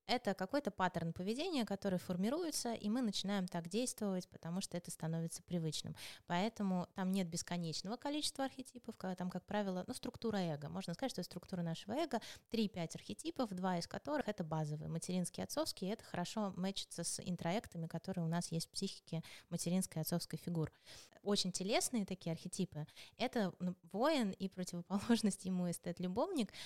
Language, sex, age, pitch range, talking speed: Russian, female, 20-39, 170-205 Hz, 160 wpm